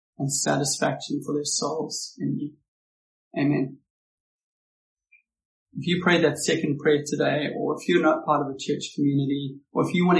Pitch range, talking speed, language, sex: 140-155 Hz, 165 wpm, English, male